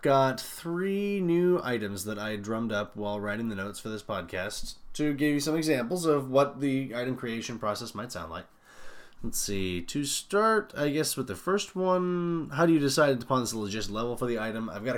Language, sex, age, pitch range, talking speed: English, male, 20-39, 105-145 Hz, 210 wpm